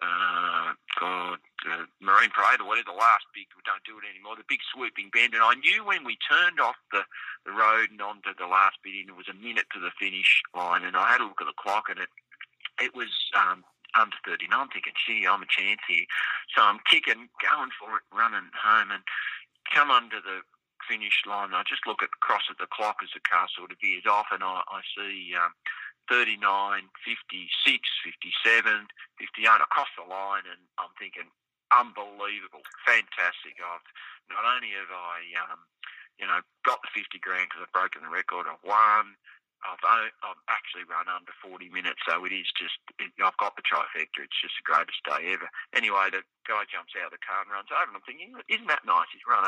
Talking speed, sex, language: 215 wpm, male, English